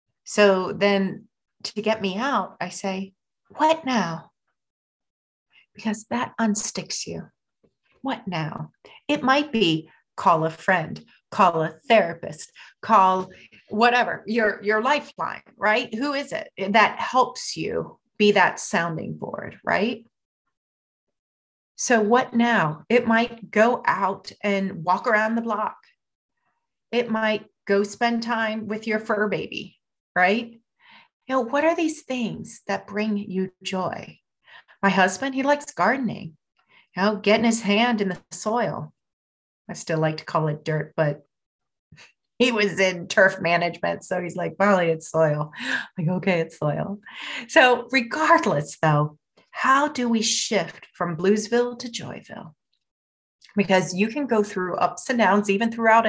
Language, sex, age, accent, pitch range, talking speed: English, female, 40-59, American, 180-235 Hz, 140 wpm